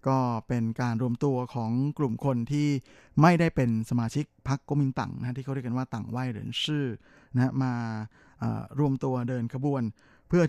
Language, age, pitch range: Thai, 20-39, 120-145 Hz